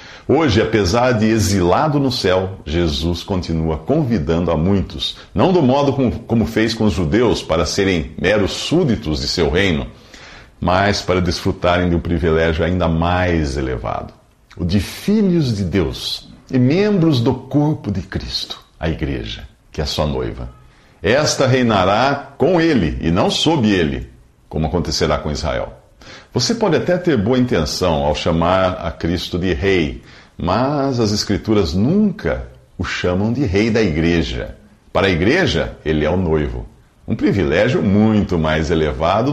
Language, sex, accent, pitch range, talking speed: Portuguese, male, Brazilian, 80-120 Hz, 150 wpm